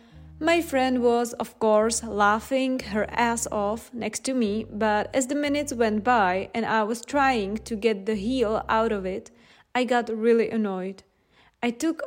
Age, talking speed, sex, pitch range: 20-39, 175 wpm, female, 205-245 Hz